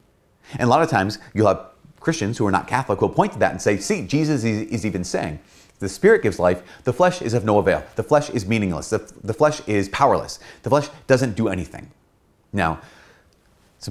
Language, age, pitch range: English, 30-49, 90-130 Hz